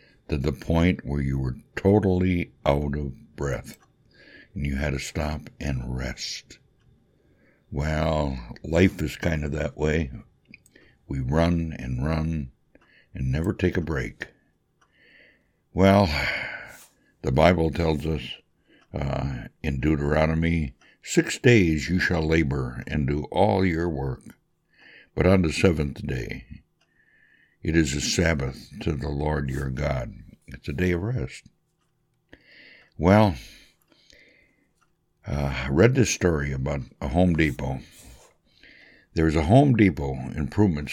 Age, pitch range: 60-79, 70-90 Hz